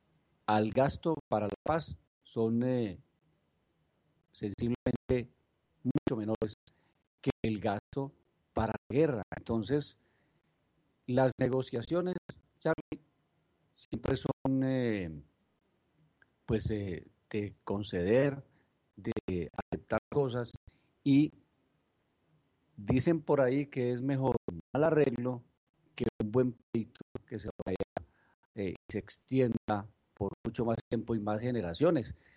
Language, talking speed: Spanish, 105 wpm